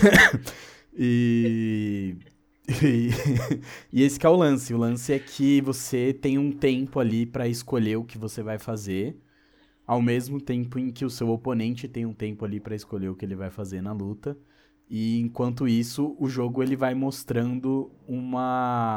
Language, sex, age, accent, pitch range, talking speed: Portuguese, male, 20-39, Brazilian, 100-120 Hz, 170 wpm